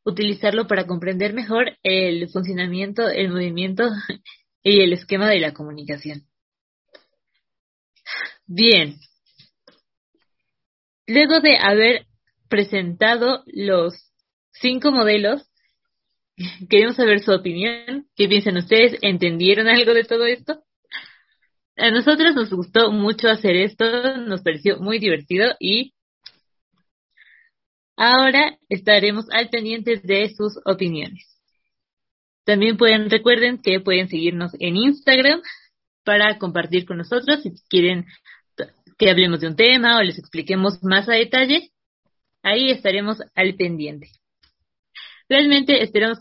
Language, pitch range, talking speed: English, 185-235 Hz, 110 wpm